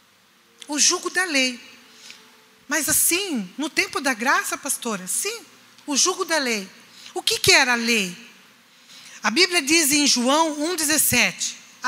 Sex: female